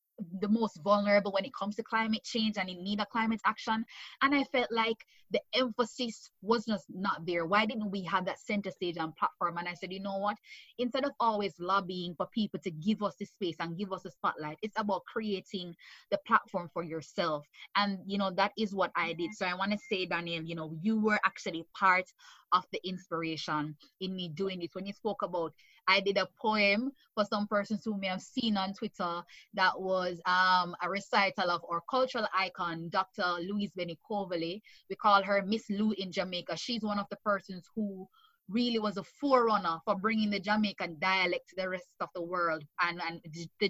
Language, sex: English, female